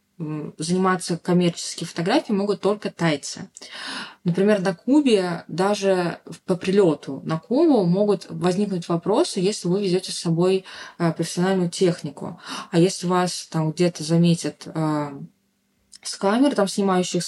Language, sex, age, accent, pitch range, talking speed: Russian, female, 20-39, native, 170-205 Hz, 115 wpm